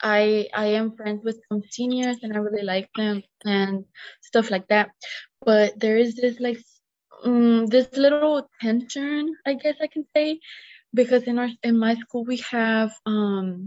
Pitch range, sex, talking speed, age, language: 205-230 Hz, female, 170 wpm, 20-39, English